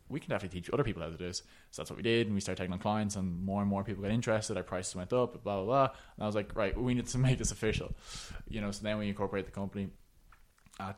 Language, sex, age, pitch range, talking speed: English, male, 20-39, 95-110 Hz, 300 wpm